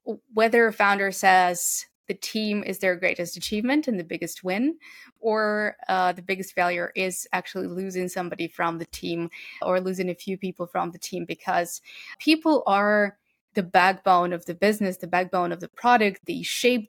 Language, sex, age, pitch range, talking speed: English, female, 20-39, 185-220 Hz, 175 wpm